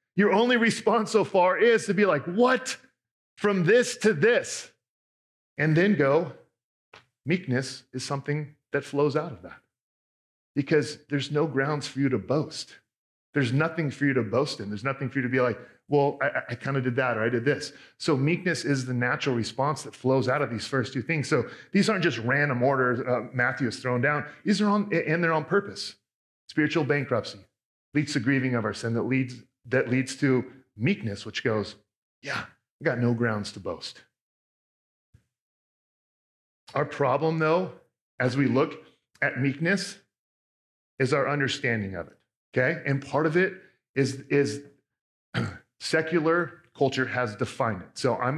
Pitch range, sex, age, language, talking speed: 125-155 Hz, male, 40-59, English, 170 wpm